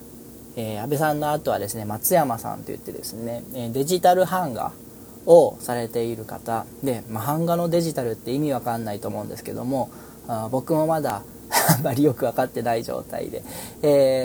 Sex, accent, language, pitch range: male, native, Japanese, 115-150 Hz